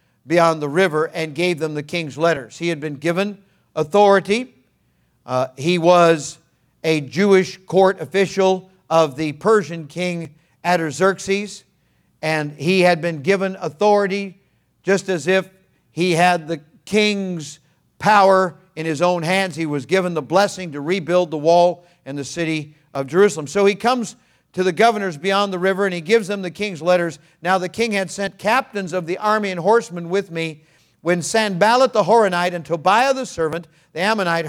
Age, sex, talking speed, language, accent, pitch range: 50-69, male, 170 wpm, English, American, 160-195 Hz